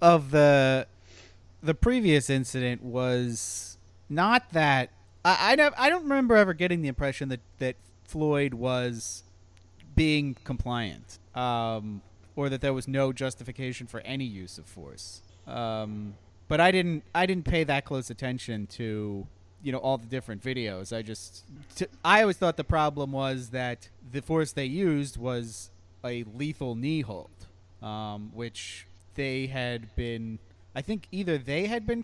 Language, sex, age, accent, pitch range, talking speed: English, male, 30-49, American, 100-145 Hz, 150 wpm